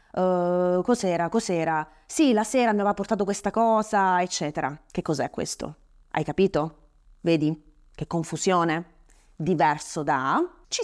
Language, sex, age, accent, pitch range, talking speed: Italian, female, 20-39, native, 165-235 Hz, 120 wpm